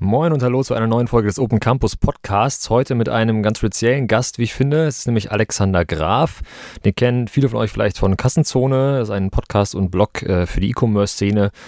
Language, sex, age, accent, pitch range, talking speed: English, male, 30-49, German, 95-110 Hz, 215 wpm